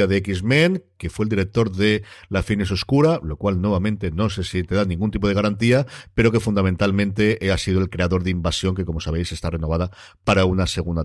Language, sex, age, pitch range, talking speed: Spanish, male, 50-69, 90-130 Hz, 210 wpm